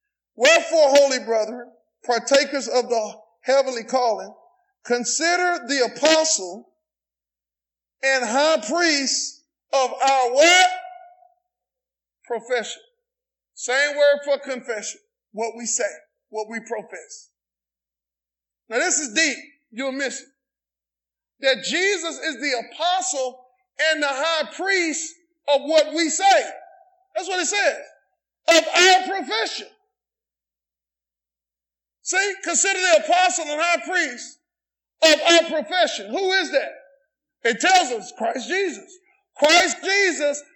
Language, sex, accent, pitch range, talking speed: English, male, American, 255-340 Hz, 110 wpm